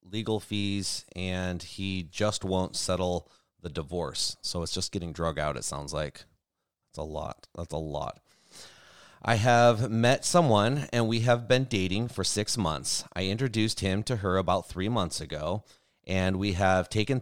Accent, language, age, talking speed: American, English, 30-49, 170 wpm